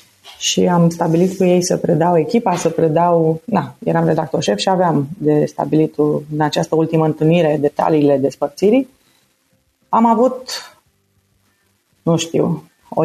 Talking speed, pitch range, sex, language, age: 135 wpm, 160-205 Hz, female, Romanian, 30-49